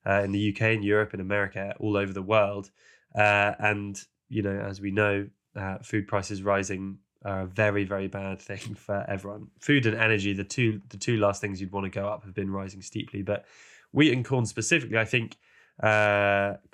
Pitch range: 100-115 Hz